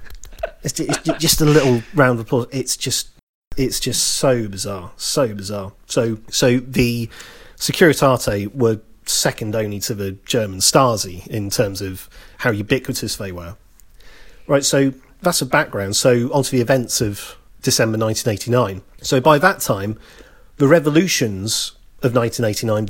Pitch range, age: 110-130 Hz, 40-59